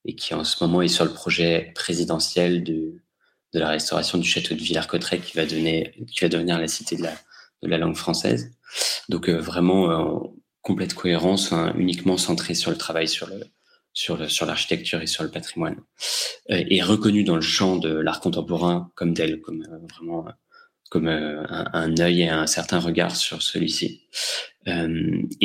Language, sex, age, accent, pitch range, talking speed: English, male, 30-49, French, 80-90 Hz, 190 wpm